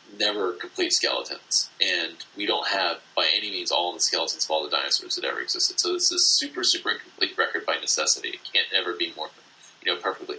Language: English